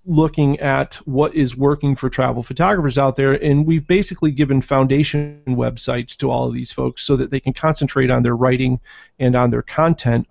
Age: 30-49